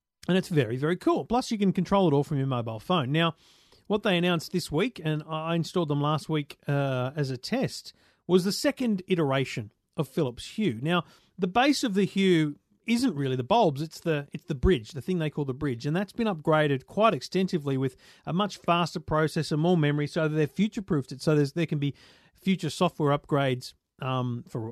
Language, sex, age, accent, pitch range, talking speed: English, male, 40-59, Australian, 140-185 Hz, 205 wpm